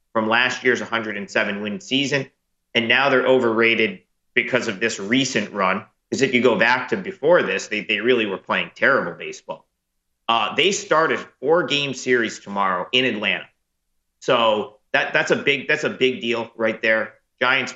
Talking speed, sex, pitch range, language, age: 175 wpm, male, 105-125 Hz, English, 40-59